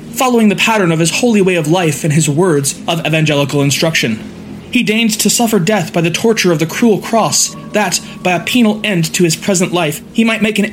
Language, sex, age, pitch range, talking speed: English, male, 20-39, 160-210 Hz, 225 wpm